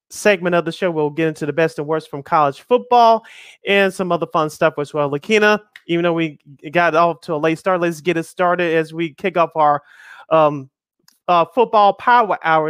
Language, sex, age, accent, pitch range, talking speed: English, male, 30-49, American, 160-190 Hz, 215 wpm